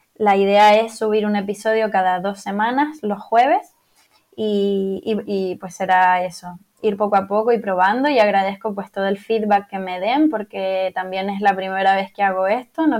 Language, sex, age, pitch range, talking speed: Spanish, female, 10-29, 200-225 Hz, 190 wpm